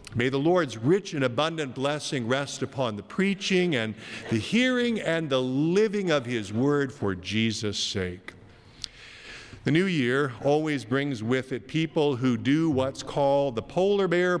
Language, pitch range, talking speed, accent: English, 110-150 Hz, 160 wpm, American